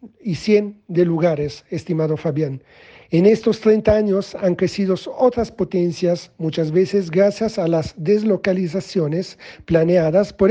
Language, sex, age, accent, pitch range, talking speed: Spanish, male, 40-59, Italian, 170-210 Hz, 125 wpm